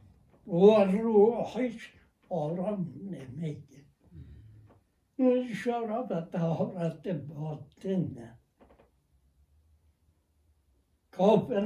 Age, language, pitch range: 60-79, Persian, 135-215 Hz